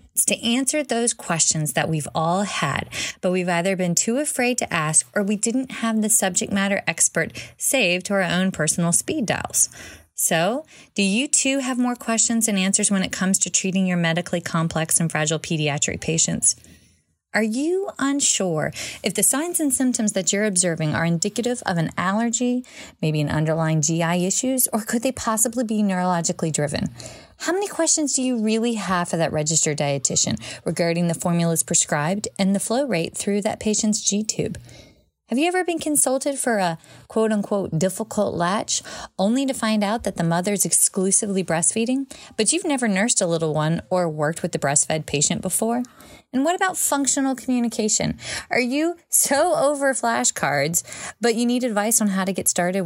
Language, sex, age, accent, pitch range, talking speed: English, female, 20-39, American, 170-235 Hz, 175 wpm